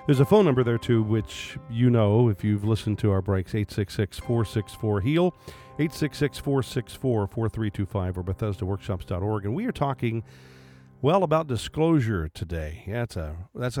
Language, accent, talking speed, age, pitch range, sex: English, American, 135 wpm, 50-69, 100-140 Hz, male